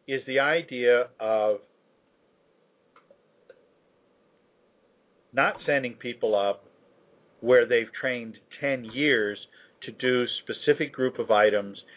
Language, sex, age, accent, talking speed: English, male, 50-69, American, 95 wpm